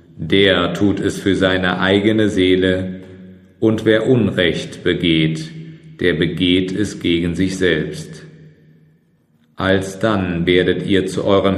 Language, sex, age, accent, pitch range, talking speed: German, male, 40-59, German, 85-105 Hz, 115 wpm